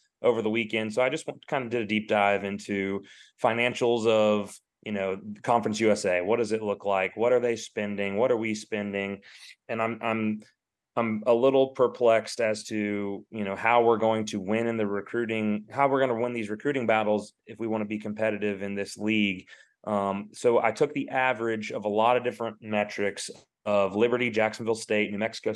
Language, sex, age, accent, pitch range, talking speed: English, male, 30-49, American, 100-115 Hz, 200 wpm